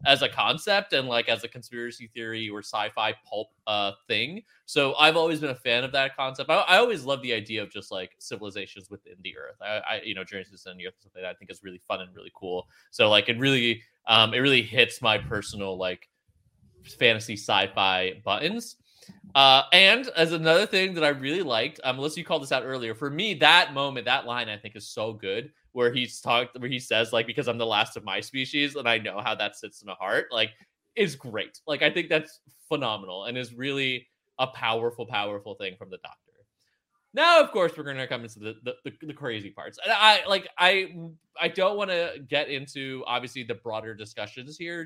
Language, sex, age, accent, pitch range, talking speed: English, male, 20-39, American, 115-155 Hz, 220 wpm